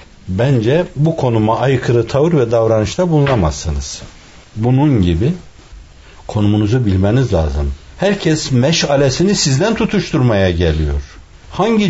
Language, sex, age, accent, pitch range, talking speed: Turkish, male, 60-79, native, 95-145 Hz, 95 wpm